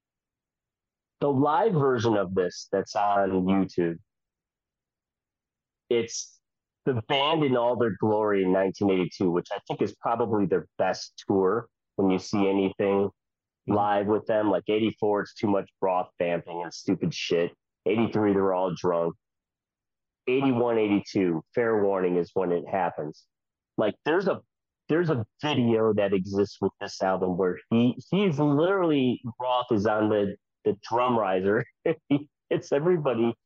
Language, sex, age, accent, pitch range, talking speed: English, male, 30-49, American, 100-130 Hz, 140 wpm